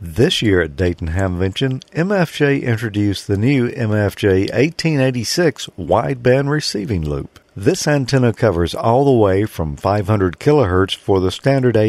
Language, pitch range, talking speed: English, 100-140 Hz, 125 wpm